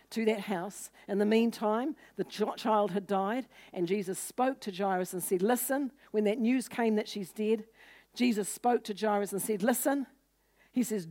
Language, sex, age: English, female, 60-79